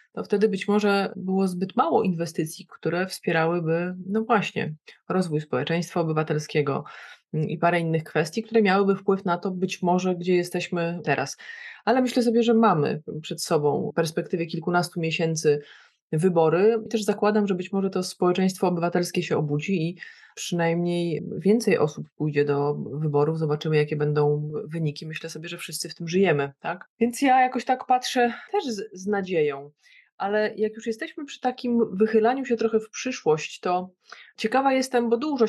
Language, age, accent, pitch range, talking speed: Polish, 20-39, native, 170-215 Hz, 160 wpm